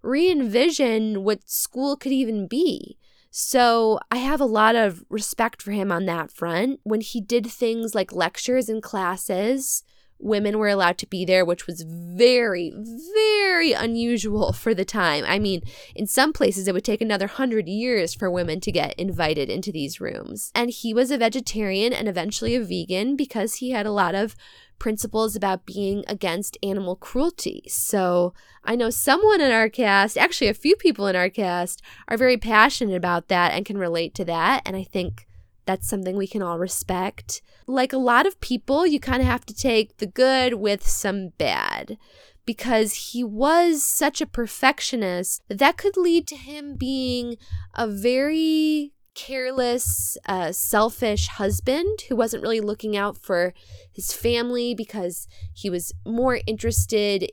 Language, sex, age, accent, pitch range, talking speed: English, female, 10-29, American, 190-255 Hz, 165 wpm